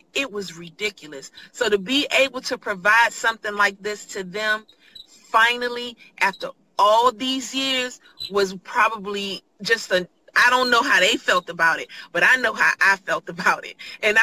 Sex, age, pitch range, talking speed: female, 30-49, 190-235 Hz, 170 wpm